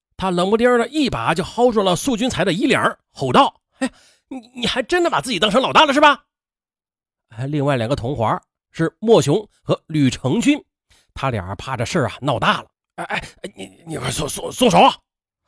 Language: Chinese